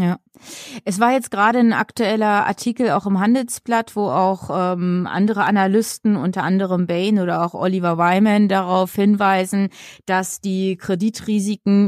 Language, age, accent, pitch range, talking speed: German, 20-39, German, 180-210 Hz, 140 wpm